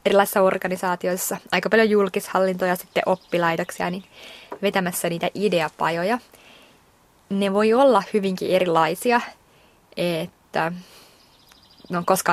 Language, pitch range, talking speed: Finnish, 160-195 Hz, 90 wpm